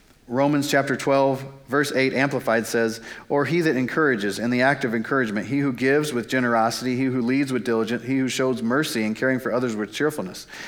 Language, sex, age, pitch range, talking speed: English, male, 40-59, 120-145 Hz, 200 wpm